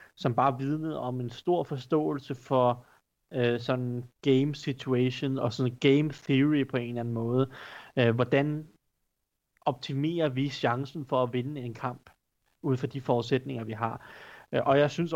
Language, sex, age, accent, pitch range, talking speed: Danish, male, 30-49, native, 120-145 Hz, 160 wpm